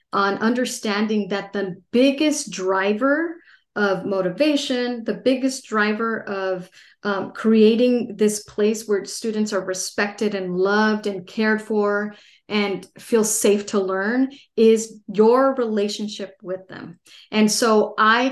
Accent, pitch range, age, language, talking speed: American, 200-235 Hz, 30-49, English, 125 wpm